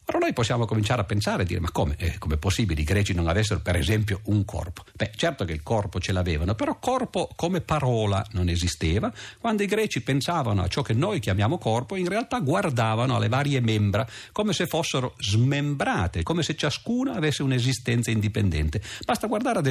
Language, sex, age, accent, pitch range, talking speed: Italian, male, 50-69, native, 95-145 Hz, 190 wpm